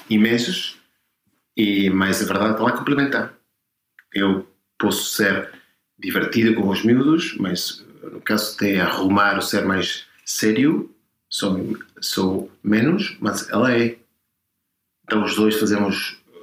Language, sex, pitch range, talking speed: Portuguese, male, 100-115 Hz, 130 wpm